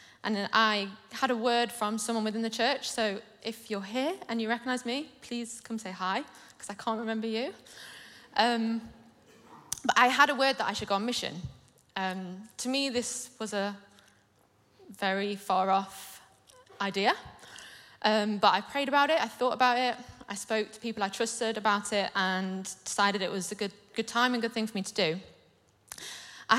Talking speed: 185 wpm